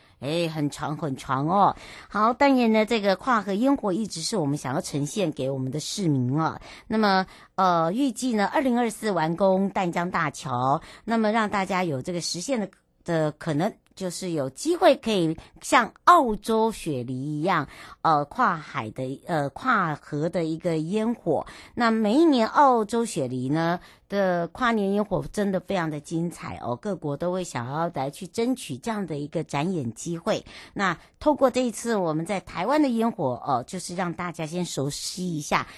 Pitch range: 155-225 Hz